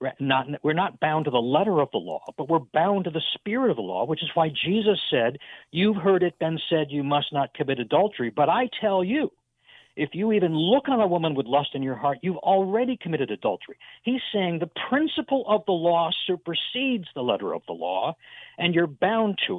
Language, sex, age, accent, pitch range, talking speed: English, male, 60-79, American, 145-205 Hz, 220 wpm